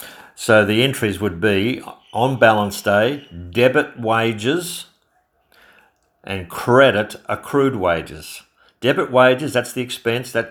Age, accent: 50-69, Australian